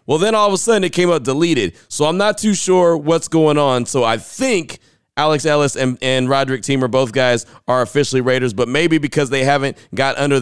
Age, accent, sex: 30-49, American, male